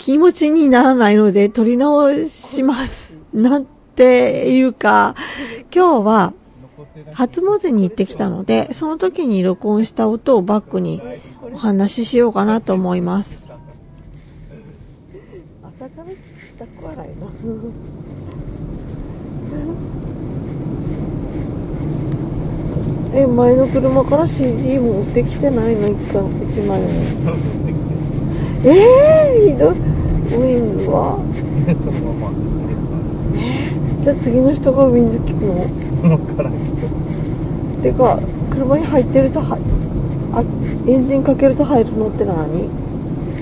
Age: 40-59